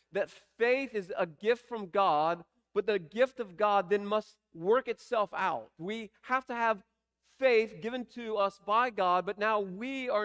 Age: 40-59